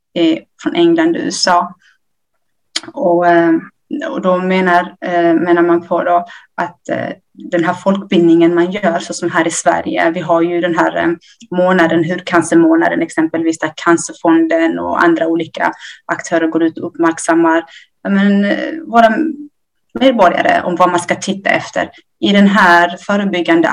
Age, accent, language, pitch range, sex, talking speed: 30-49, native, Swedish, 165-190 Hz, female, 140 wpm